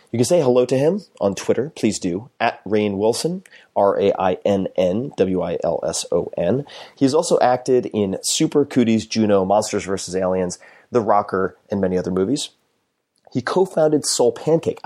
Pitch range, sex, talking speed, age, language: 95-125 Hz, male, 180 wpm, 30-49, English